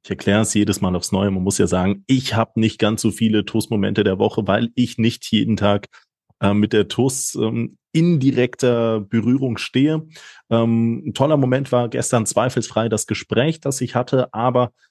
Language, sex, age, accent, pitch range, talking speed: German, male, 30-49, German, 110-135 Hz, 185 wpm